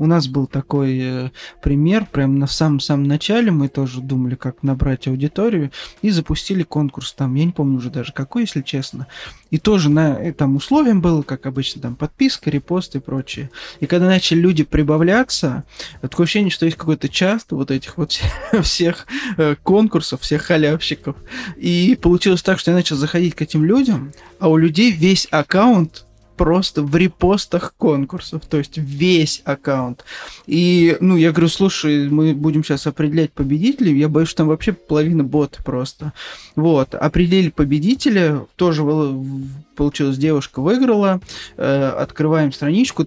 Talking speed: 150 wpm